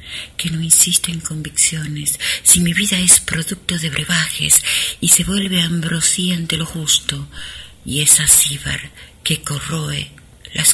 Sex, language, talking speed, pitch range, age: female, Spanish, 140 wpm, 145-170 Hz, 40-59